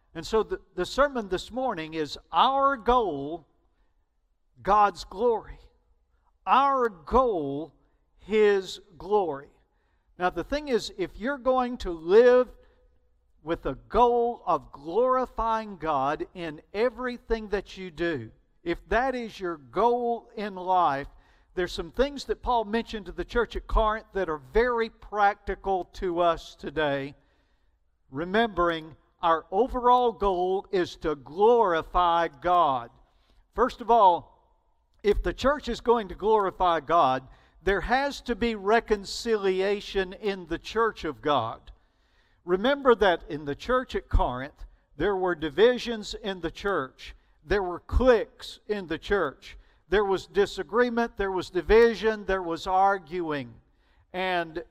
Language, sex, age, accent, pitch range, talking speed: English, male, 50-69, American, 170-235 Hz, 130 wpm